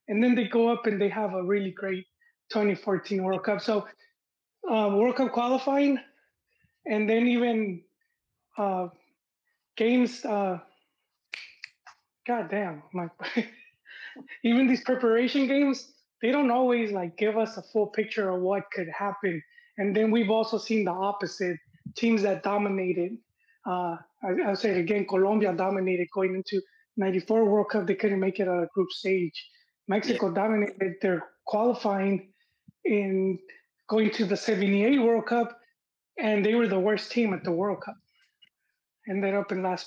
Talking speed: 150 wpm